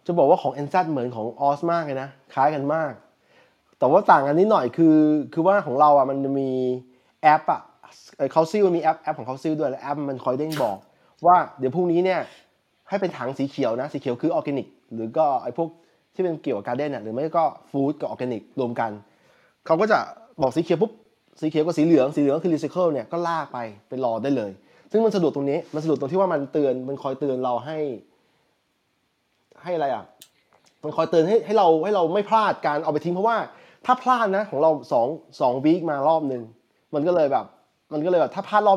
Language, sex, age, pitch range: Thai, male, 20-39, 135-175 Hz